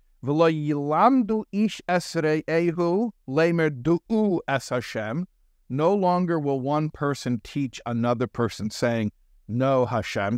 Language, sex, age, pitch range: English, male, 50-69, 105-160 Hz